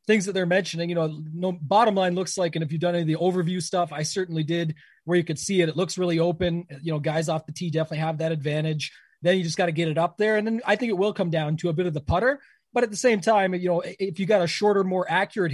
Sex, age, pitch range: male, 30-49, 175-205 Hz